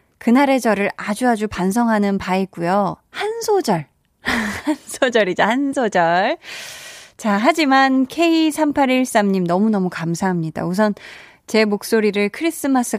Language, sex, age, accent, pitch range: Korean, female, 20-39, native, 190-270 Hz